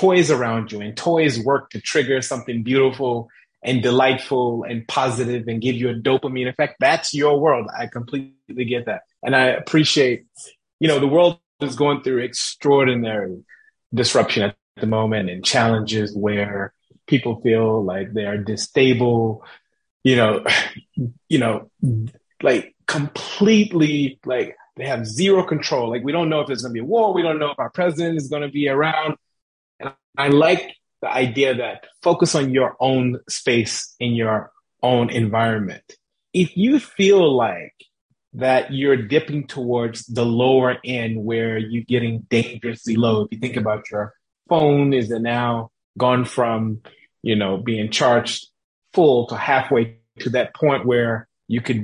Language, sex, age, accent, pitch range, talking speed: English, male, 30-49, American, 115-140 Hz, 160 wpm